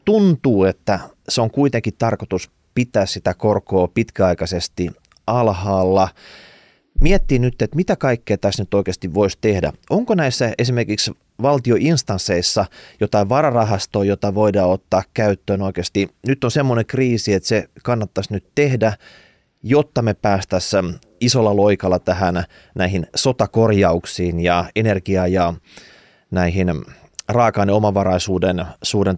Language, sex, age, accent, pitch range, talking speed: Finnish, male, 30-49, native, 95-120 Hz, 115 wpm